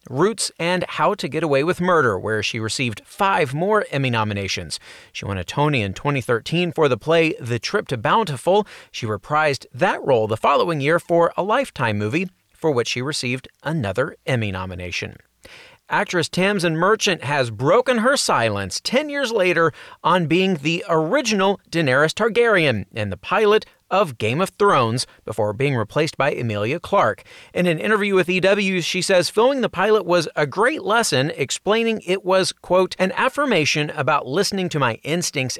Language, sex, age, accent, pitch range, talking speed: English, male, 40-59, American, 115-185 Hz, 170 wpm